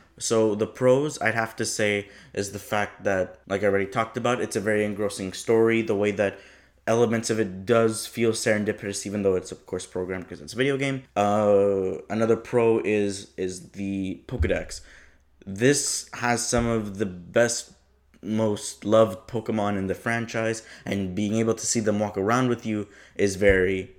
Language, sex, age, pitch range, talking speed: English, male, 20-39, 100-115 Hz, 180 wpm